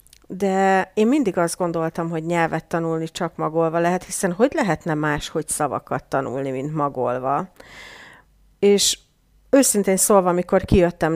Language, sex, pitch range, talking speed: Hungarian, female, 165-225 Hz, 135 wpm